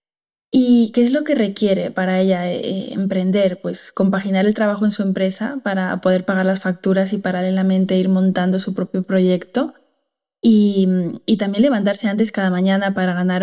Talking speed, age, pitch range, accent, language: 170 wpm, 20-39, 185-215 Hz, Spanish, Spanish